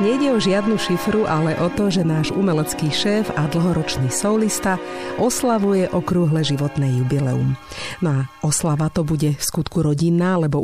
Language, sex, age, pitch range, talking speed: Slovak, female, 50-69, 145-190 Hz, 150 wpm